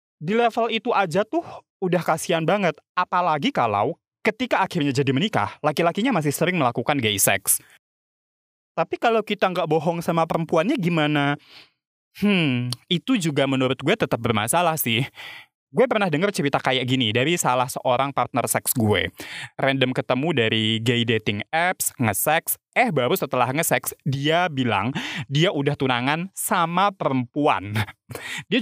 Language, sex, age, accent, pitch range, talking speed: Indonesian, male, 20-39, native, 125-180 Hz, 140 wpm